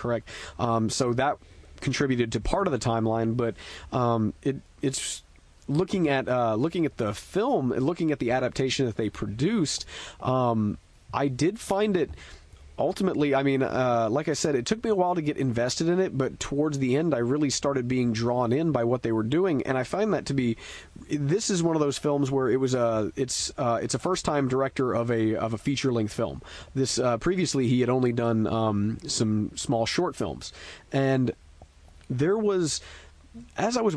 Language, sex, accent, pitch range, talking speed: English, male, American, 115-145 Hz, 200 wpm